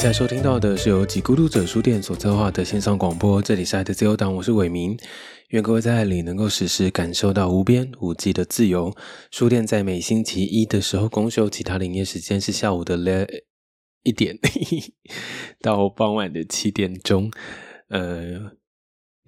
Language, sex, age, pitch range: Chinese, male, 20-39, 90-105 Hz